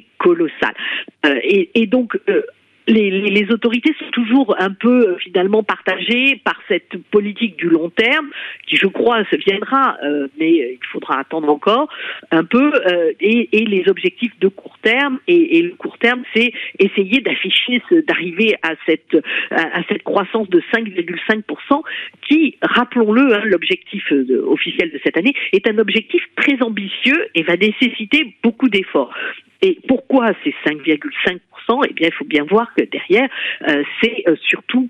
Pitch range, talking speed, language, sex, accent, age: 195-285 Hz, 155 wpm, French, female, French, 50-69